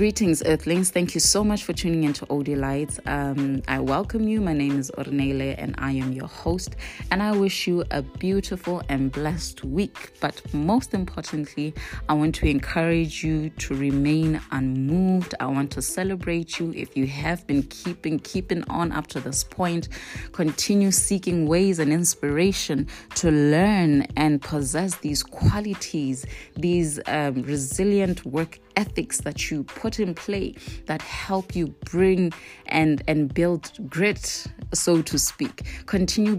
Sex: female